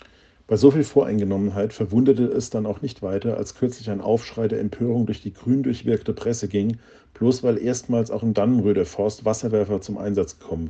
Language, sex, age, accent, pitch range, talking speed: German, male, 50-69, German, 105-120 Hz, 185 wpm